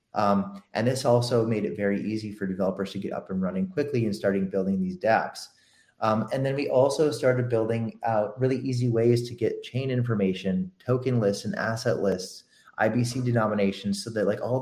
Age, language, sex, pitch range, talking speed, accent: 30-49, English, male, 105-130 Hz, 195 wpm, American